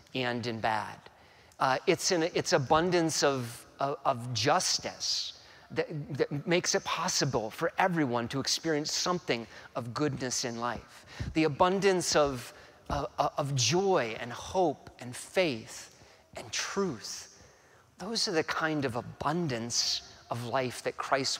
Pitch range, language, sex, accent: 125-175 Hz, English, male, American